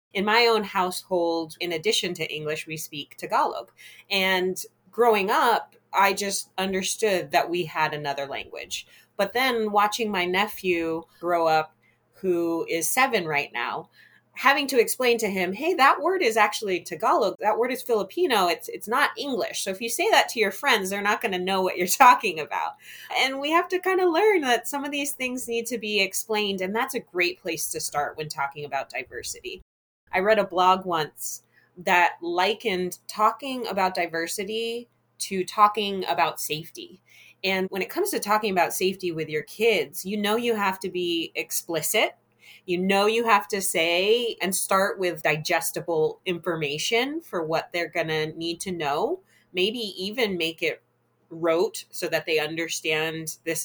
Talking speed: 175 wpm